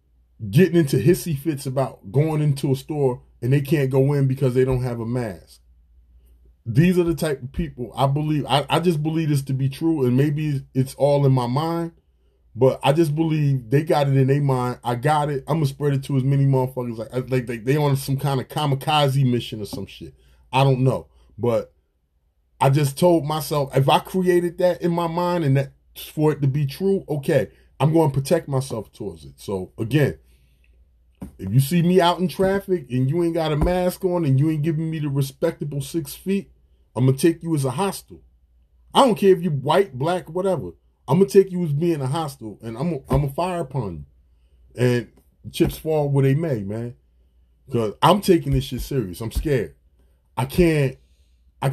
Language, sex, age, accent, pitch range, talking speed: English, male, 20-39, American, 110-160 Hz, 215 wpm